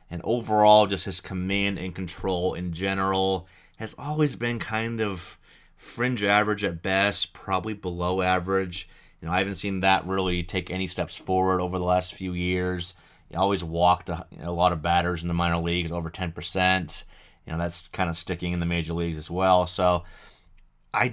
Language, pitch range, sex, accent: English, 90-100 Hz, male, American